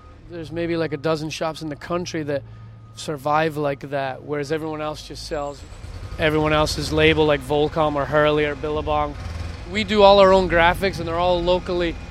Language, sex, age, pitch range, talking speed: English, male, 20-39, 135-170 Hz, 185 wpm